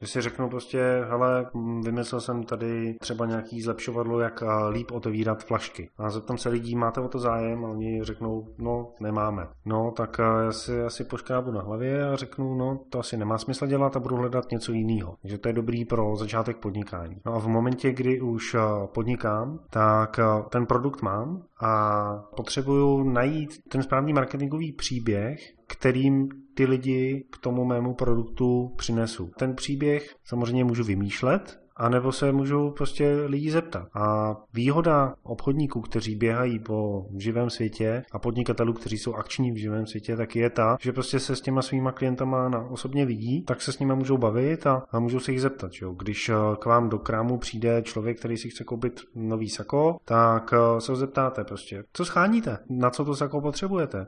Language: Czech